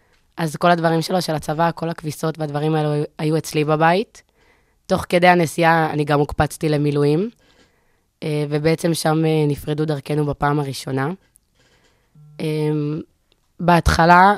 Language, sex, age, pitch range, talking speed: Hebrew, female, 20-39, 150-170 Hz, 115 wpm